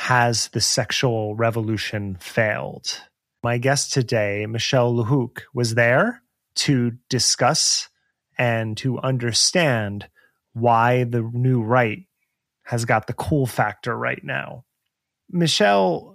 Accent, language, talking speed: American, English, 110 wpm